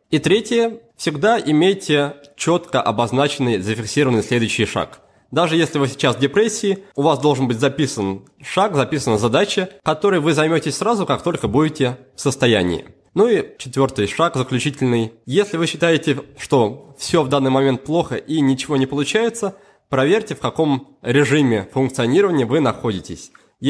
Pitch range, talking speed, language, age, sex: 120-160 Hz, 145 wpm, Russian, 20-39, male